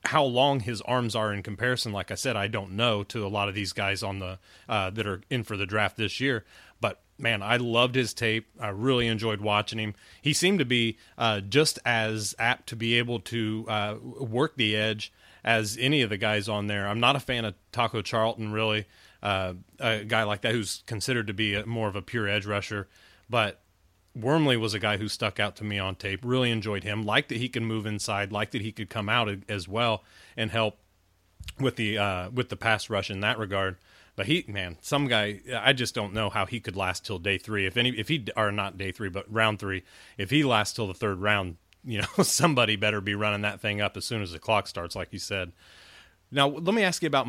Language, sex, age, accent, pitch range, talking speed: English, male, 30-49, American, 100-120 Hz, 235 wpm